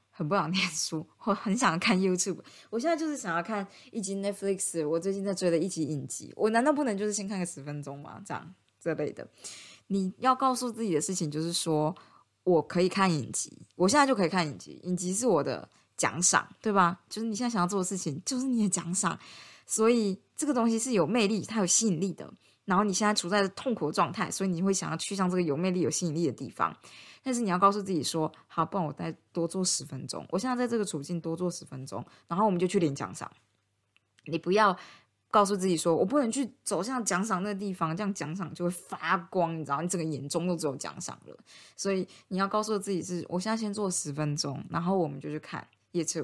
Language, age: Chinese, 20-39